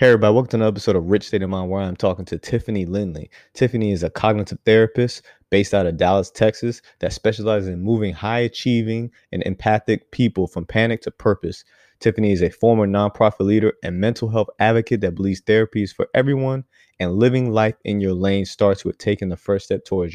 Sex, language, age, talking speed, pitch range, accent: male, English, 20-39, 205 wpm, 95-115 Hz, American